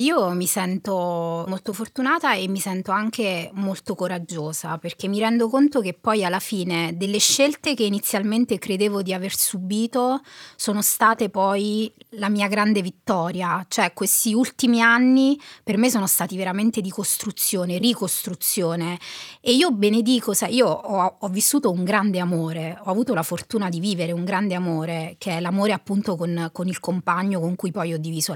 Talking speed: 165 wpm